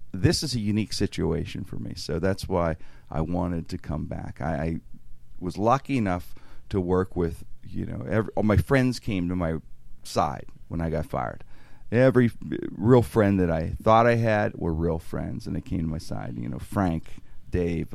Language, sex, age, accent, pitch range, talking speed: English, male, 40-59, American, 80-105 Hz, 190 wpm